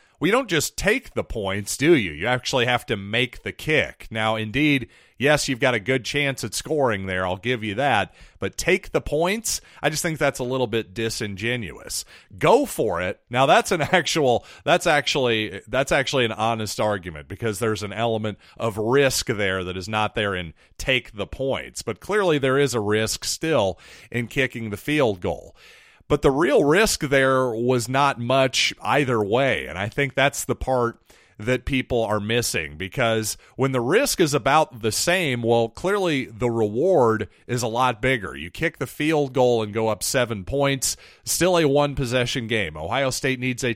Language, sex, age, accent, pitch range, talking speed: English, male, 40-59, American, 110-135 Hz, 190 wpm